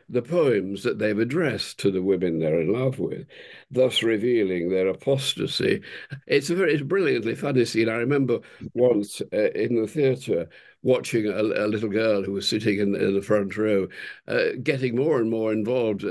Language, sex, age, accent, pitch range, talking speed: English, male, 60-79, British, 100-120 Hz, 180 wpm